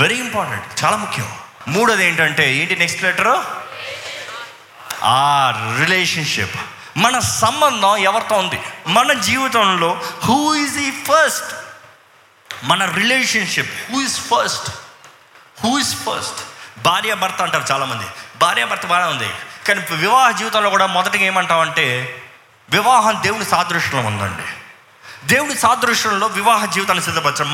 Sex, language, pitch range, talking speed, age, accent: male, Telugu, 150-215 Hz, 110 wpm, 20-39, native